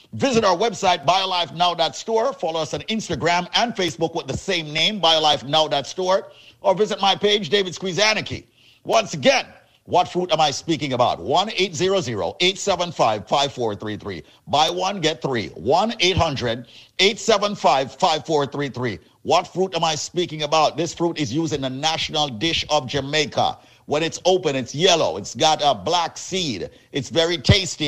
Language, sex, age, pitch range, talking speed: English, male, 50-69, 145-185 Hz, 140 wpm